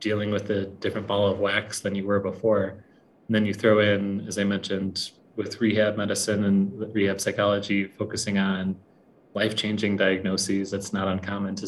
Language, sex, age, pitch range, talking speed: English, male, 20-39, 95-105 Hz, 170 wpm